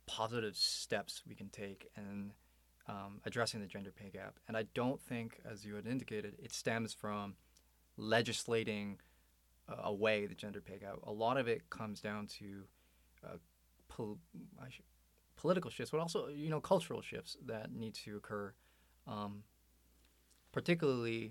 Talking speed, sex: 145 wpm, male